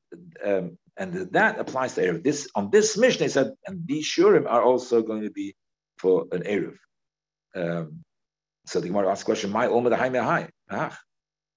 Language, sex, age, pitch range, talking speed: English, male, 50-69, 100-155 Hz, 155 wpm